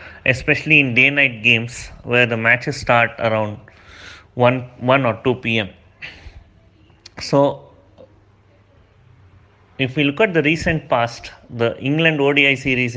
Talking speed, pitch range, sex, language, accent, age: 120 wpm, 105-135 Hz, male, English, Indian, 30-49